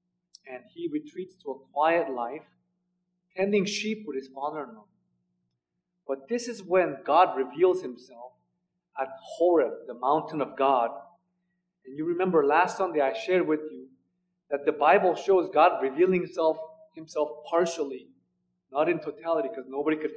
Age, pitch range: 30-49, 135-185 Hz